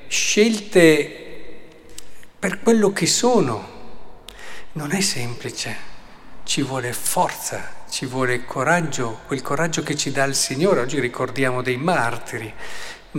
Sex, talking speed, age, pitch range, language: male, 115 wpm, 50-69, 130-175 Hz, Italian